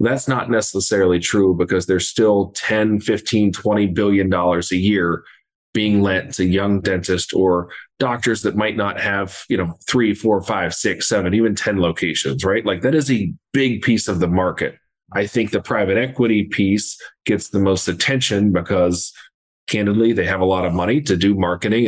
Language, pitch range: English, 90-105 Hz